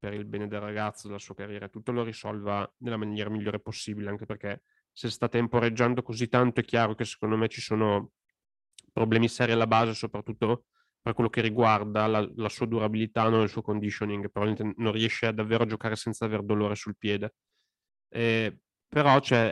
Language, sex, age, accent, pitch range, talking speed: Italian, male, 20-39, native, 110-125 Hz, 185 wpm